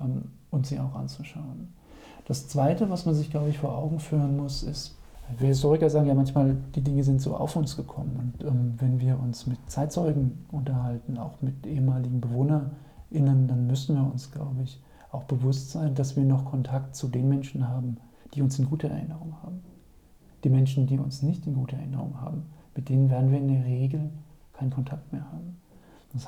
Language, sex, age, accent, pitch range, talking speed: German, male, 40-59, German, 130-150 Hz, 190 wpm